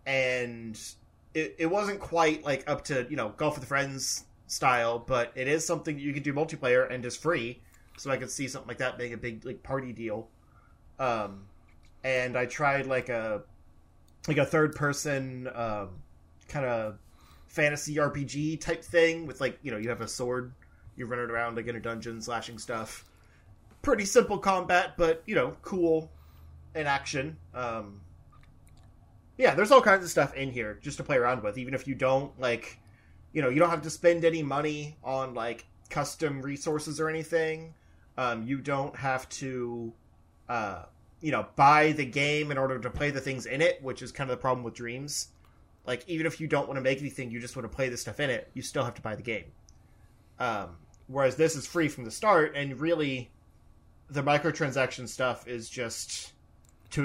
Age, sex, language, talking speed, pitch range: 20-39, male, English, 195 wpm, 110-145 Hz